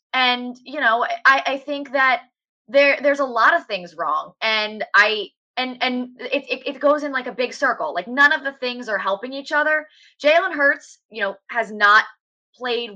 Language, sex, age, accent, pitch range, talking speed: English, female, 20-39, American, 210-280 Hz, 200 wpm